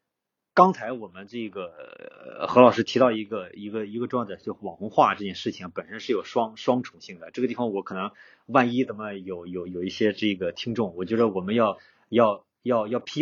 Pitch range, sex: 95-120 Hz, male